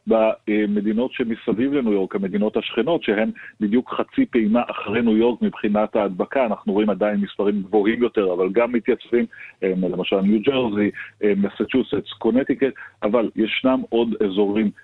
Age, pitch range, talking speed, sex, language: 40-59, 100-115 Hz, 135 wpm, male, Hebrew